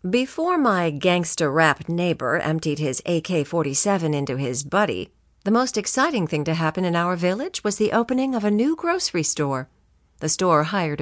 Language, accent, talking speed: English, American, 165 wpm